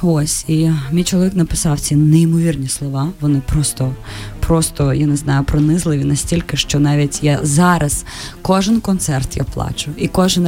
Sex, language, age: female, Ukrainian, 20-39